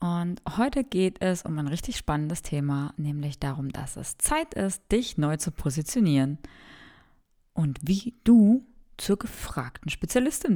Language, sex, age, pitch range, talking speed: German, female, 20-39, 155-215 Hz, 140 wpm